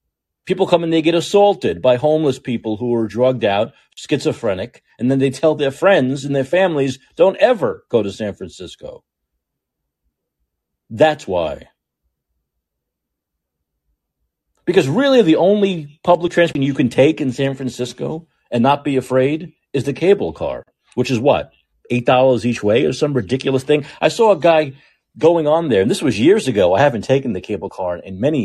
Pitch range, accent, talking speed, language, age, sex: 110-175 Hz, American, 170 wpm, English, 40-59, male